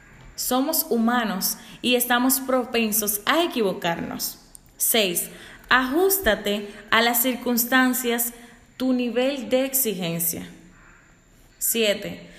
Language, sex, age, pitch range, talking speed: Spanish, female, 10-29, 200-255 Hz, 80 wpm